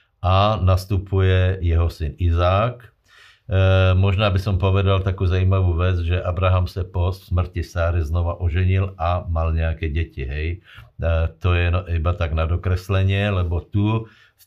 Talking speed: 150 wpm